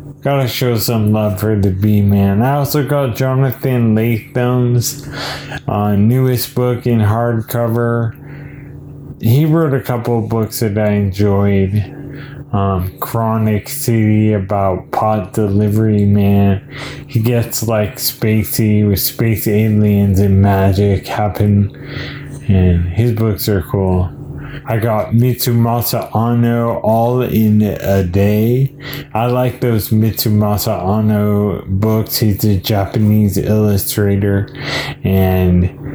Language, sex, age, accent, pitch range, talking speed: English, male, 20-39, American, 100-120 Hz, 110 wpm